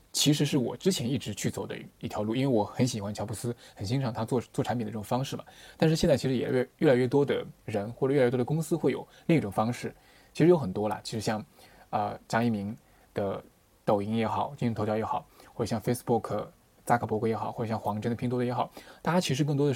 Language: Chinese